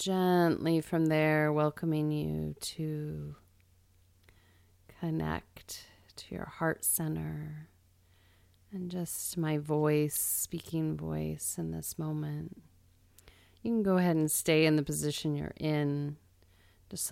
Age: 30-49